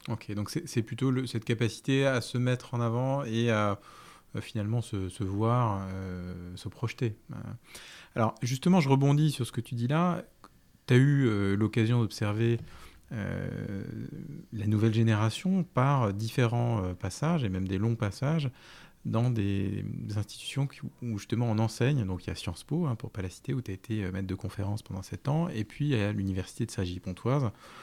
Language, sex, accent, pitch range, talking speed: French, male, French, 100-130 Hz, 195 wpm